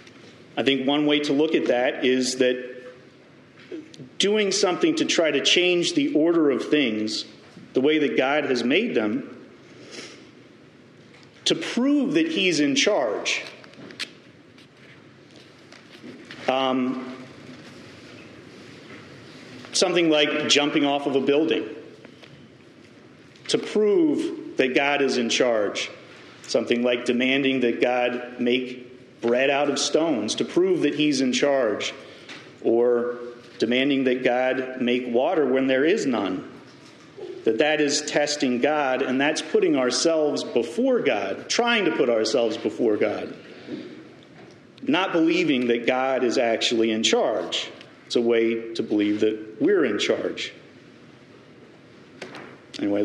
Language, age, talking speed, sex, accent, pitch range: English, 40-59, 125 wpm, male, American, 125-190 Hz